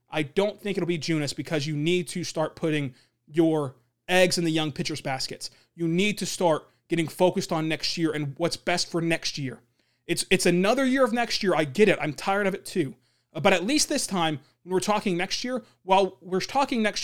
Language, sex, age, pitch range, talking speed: English, male, 30-49, 155-200 Hz, 220 wpm